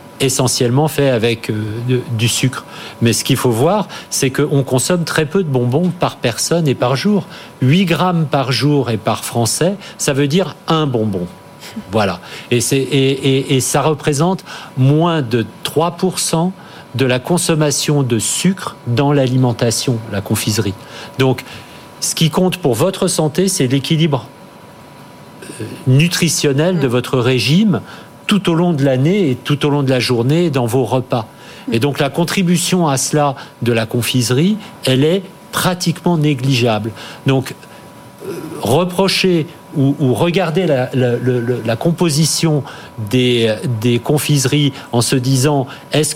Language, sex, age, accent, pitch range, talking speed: French, male, 50-69, French, 125-170 Hz, 150 wpm